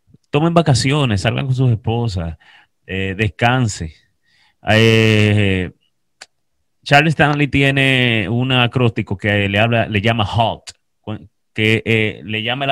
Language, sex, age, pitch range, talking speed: English, male, 30-49, 105-135 Hz, 120 wpm